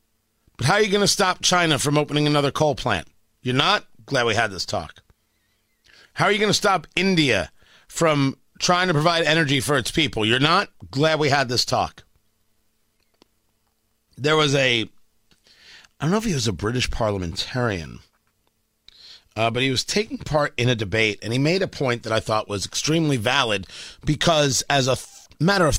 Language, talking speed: English, 185 wpm